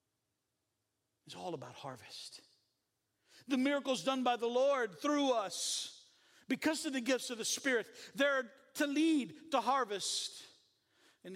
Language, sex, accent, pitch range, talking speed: English, male, American, 200-315 Hz, 130 wpm